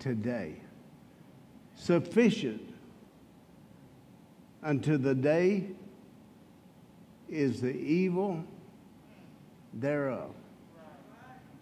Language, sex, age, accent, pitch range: English, male, 60-79, American, 160-240 Hz